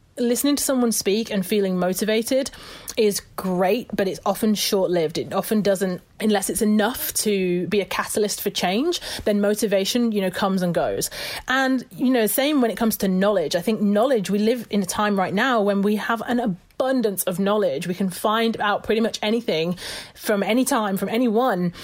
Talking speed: 195 wpm